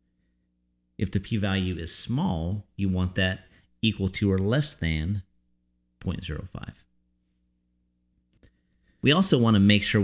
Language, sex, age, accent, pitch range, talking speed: English, male, 40-59, American, 85-105 Hz, 120 wpm